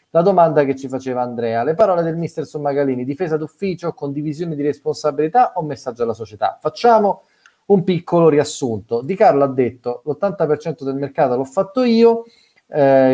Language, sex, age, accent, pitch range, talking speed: Italian, male, 30-49, native, 115-150 Hz, 165 wpm